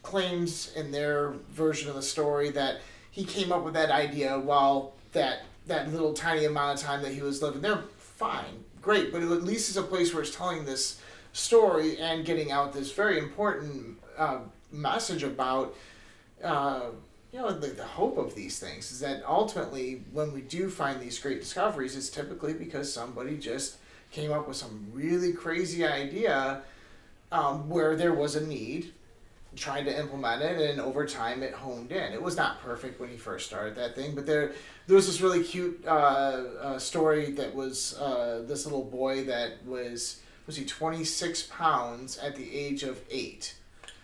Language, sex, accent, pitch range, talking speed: English, male, American, 125-155 Hz, 180 wpm